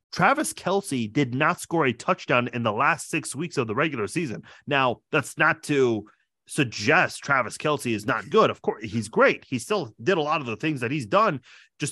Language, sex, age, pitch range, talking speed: English, male, 30-49, 125-185 Hz, 210 wpm